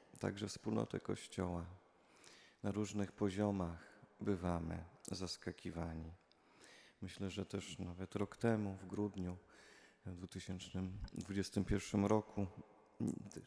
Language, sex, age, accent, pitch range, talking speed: Polish, male, 30-49, native, 95-110 Hz, 75 wpm